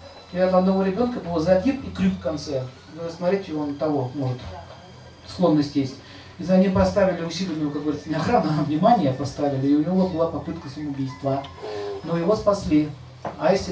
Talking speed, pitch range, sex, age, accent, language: 175 wpm, 140-190 Hz, male, 40-59, native, Russian